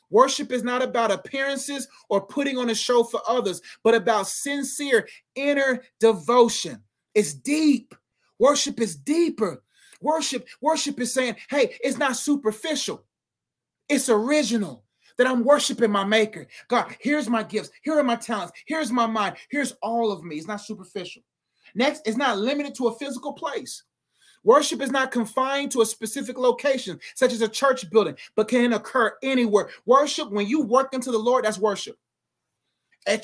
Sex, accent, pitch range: male, American, 220-270 Hz